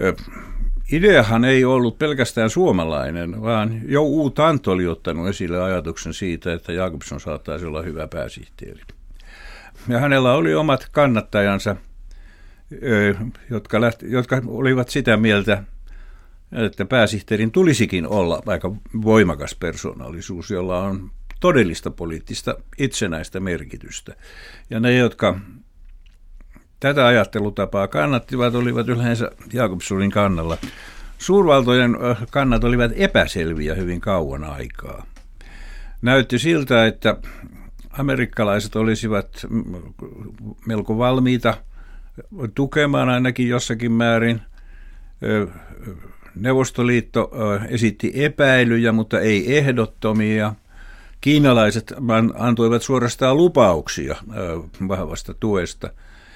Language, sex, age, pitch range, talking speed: Finnish, male, 60-79, 90-120 Hz, 90 wpm